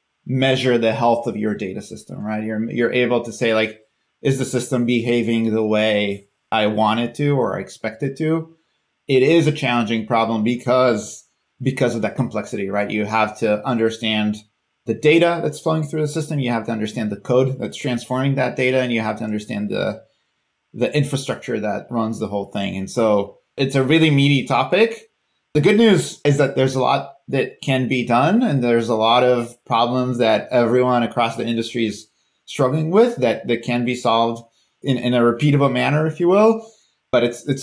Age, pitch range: 30-49, 110-130 Hz